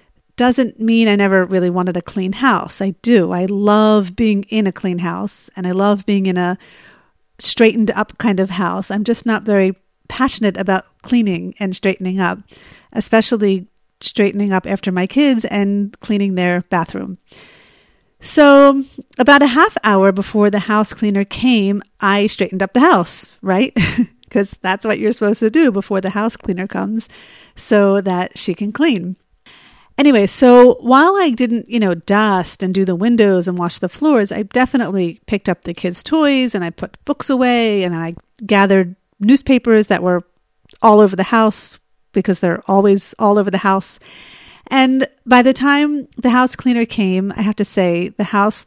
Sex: female